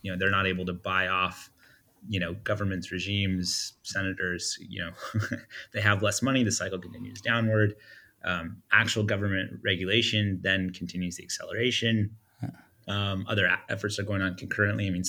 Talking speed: 165 wpm